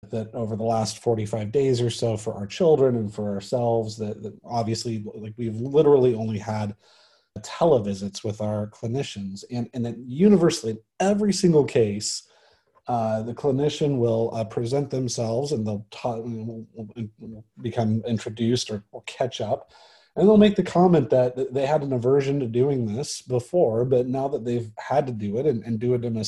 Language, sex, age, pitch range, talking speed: English, male, 30-49, 110-135 Hz, 190 wpm